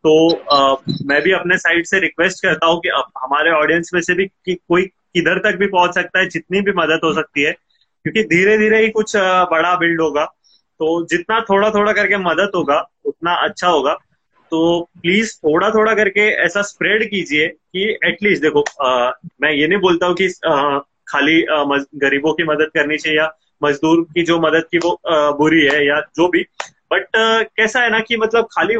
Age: 20-39